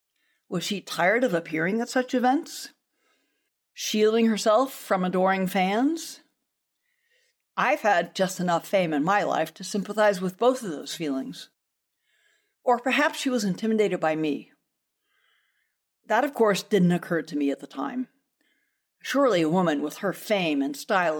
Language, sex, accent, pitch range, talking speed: English, female, American, 170-255 Hz, 150 wpm